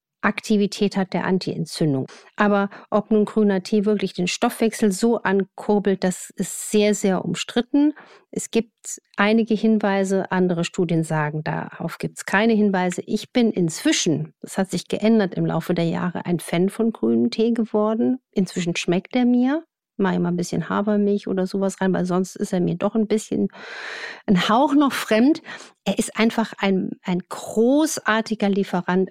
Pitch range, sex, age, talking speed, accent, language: 180-215 Hz, female, 50-69, 165 wpm, German, German